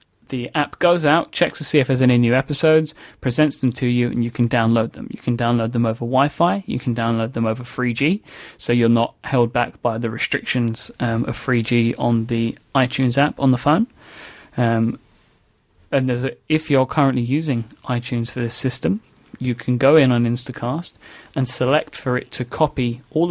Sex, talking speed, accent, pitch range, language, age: male, 195 wpm, British, 120-140 Hz, English, 30-49